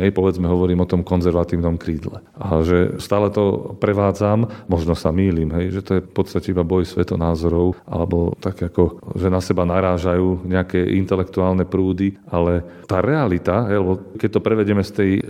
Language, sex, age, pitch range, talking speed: Slovak, male, 40-59, 90-100 Hz, 170 wpm